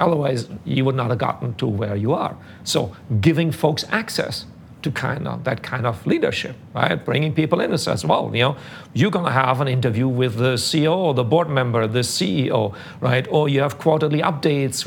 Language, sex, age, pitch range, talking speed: English, male, 50-69, 125-155 Hz, 200 wpm